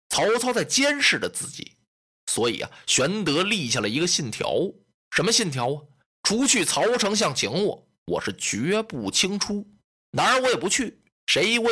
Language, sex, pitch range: Chinese, male, 180-245 Hz